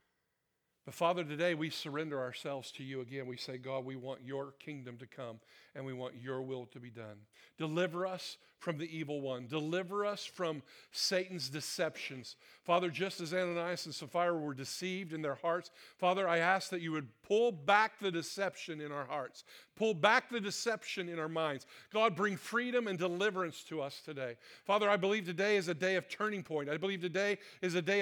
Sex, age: male, 50-69